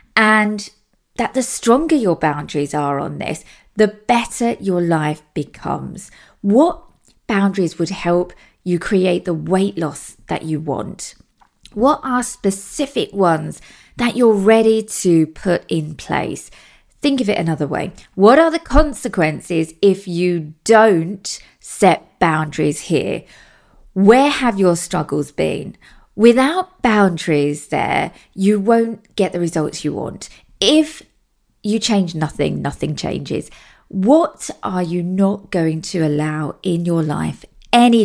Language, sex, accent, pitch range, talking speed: English, female, British, 165-225 Hz, 130 wpm